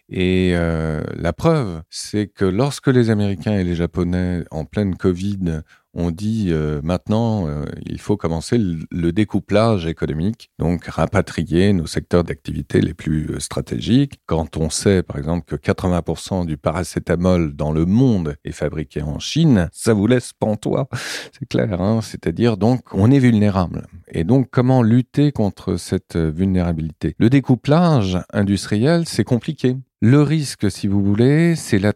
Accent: French